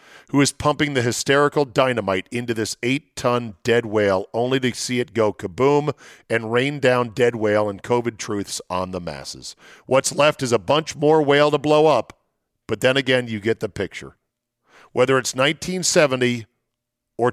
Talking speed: 170 wpm